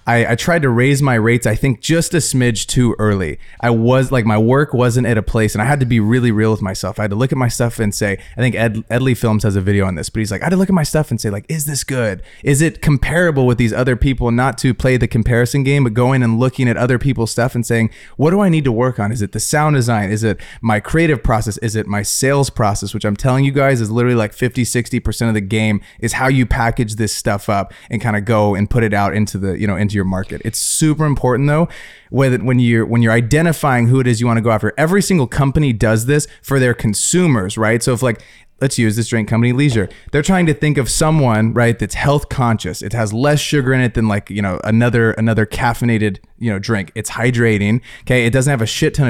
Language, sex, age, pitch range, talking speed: English, male, 20-39, 110-130 Hz, 270 wpm